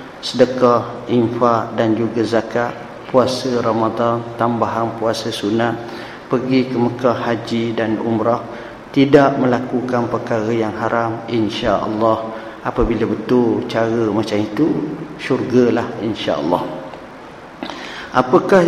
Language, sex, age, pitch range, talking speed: Malay, male, 50-69, 115-145 Hz, 95 wpm